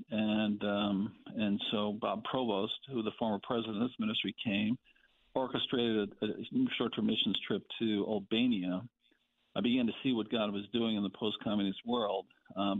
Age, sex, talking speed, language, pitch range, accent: 50-69, male, 160 wpm, English, 100-125 Hz, American